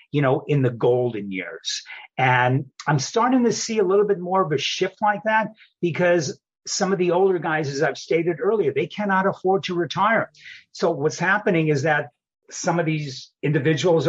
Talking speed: 185 wpm